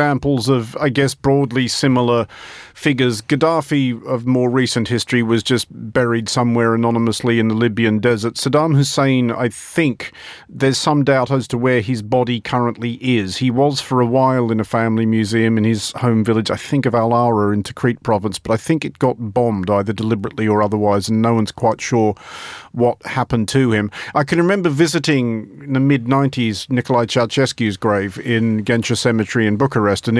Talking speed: 175 wpm